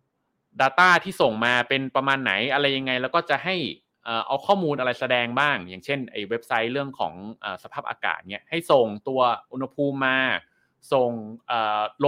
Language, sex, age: Thai, male, 20-39